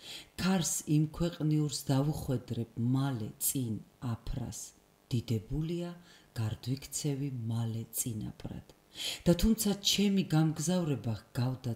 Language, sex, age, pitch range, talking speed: English, female, 40-59, 115-140 Hz, 80 wpm